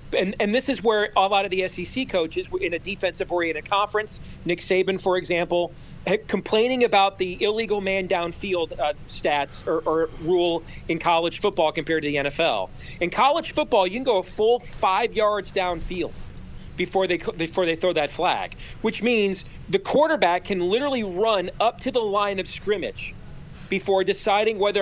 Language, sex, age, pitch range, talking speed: English, male, 40-59, 175-220 Hz, 175 wpm